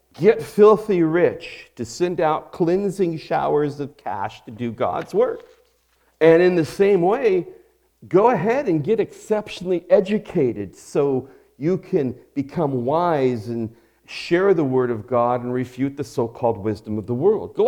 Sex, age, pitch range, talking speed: male, 40-59, 115-180 Hz, 155 wpm